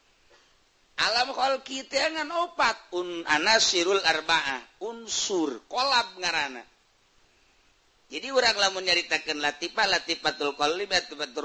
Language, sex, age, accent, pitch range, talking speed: Indonesian, male, 50-69, native, 125-180 Hz, 100 wpm